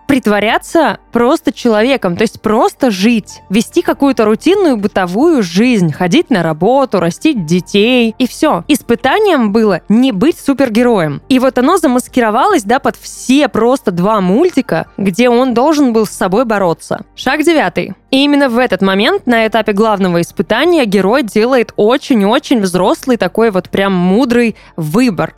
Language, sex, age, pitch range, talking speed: Russian, female, 20-39, 200-270 Hz, 145 wpm